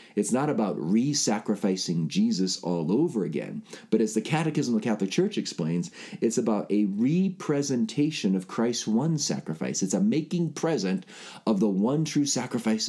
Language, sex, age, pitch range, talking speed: English, male, 40-59, 90-150 Hz, 160 wpm